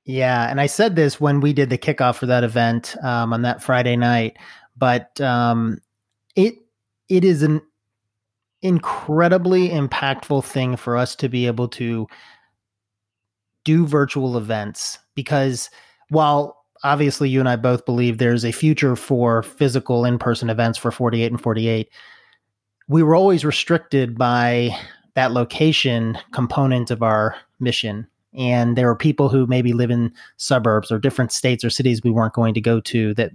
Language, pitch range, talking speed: English, 115-135 Hz, 155 wpm